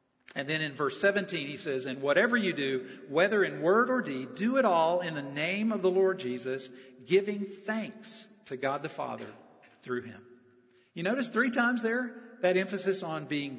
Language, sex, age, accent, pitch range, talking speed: English, male, 50-69, American, 145-220 Hz, 190 wpm